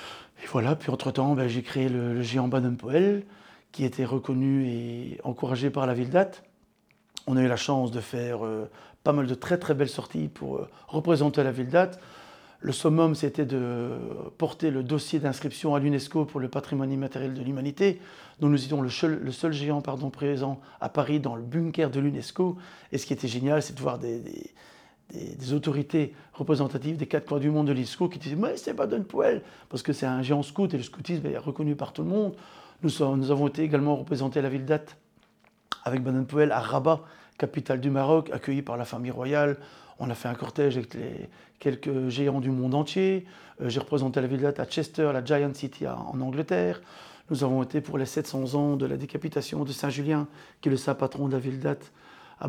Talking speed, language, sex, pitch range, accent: 215 wpm, French, male, 130-150 Hz, French